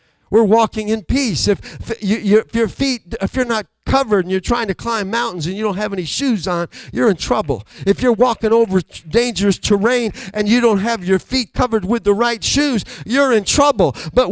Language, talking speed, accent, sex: English, 215 wpm, American, male